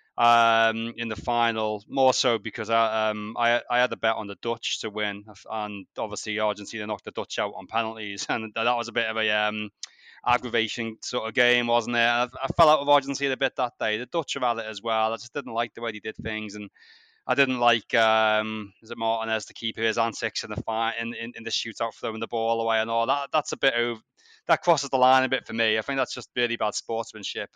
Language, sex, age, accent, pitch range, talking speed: English, male, 20-39, British, 105-120 Hz, 245 wpm